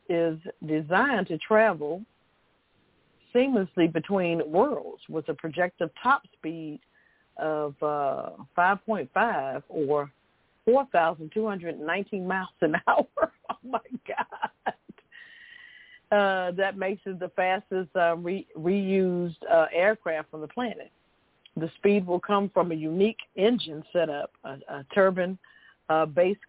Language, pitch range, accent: English, 160-205 Hz, American